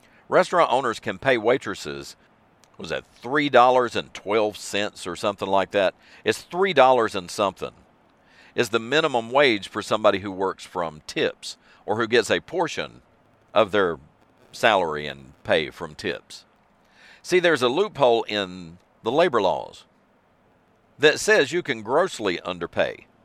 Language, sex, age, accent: English, male, 50-69, American